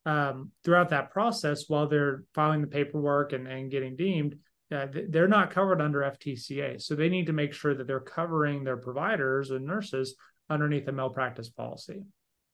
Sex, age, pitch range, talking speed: male, 30-49, 135-170 Hz, 170 wpm